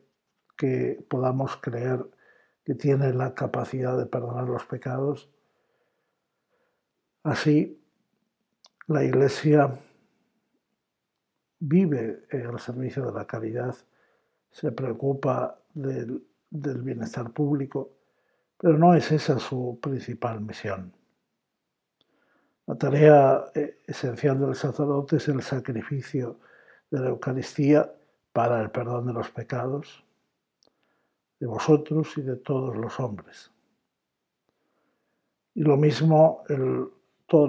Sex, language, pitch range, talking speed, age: male, Spanish, 120-150 Hz, 100 wpm, 60-79